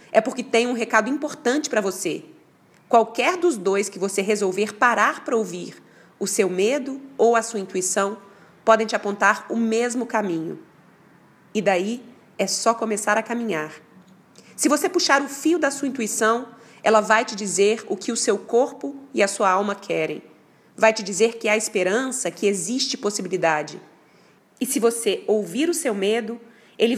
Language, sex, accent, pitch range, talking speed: Portuguese, female, Brazilian, 200-245 Hz, 170 wpm